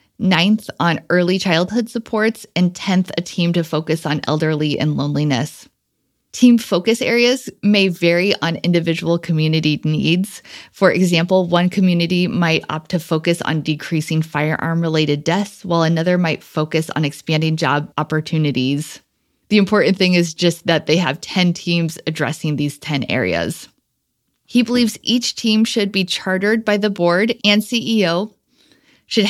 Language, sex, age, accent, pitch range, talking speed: English, female, 30-49, American, 160-205 Hz, 145 wpm